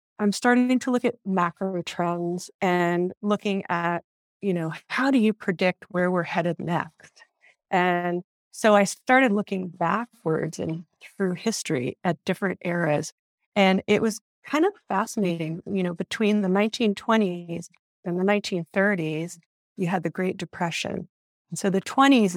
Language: English